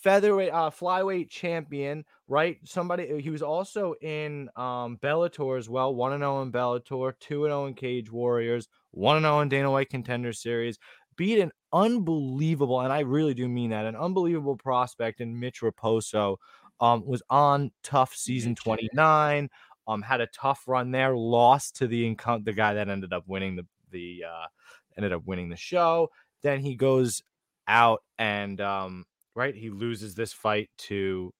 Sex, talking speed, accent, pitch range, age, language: male, 160 wpm, American, 110-155 Hz, 20-39, English